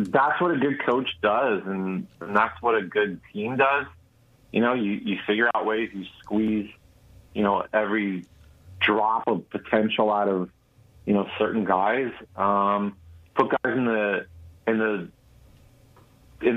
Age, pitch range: 30-49, 95-110 Hz